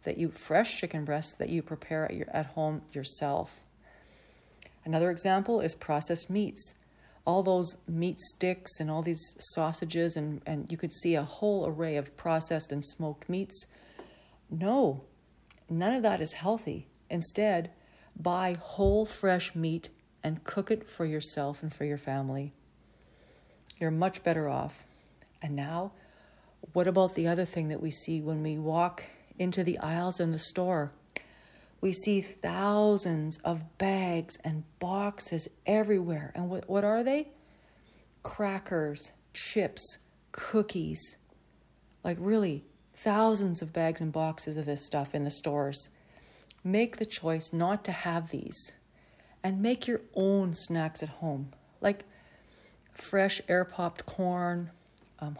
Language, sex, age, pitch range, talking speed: English, female, 50-69, 155-190 Hz, 140 wpm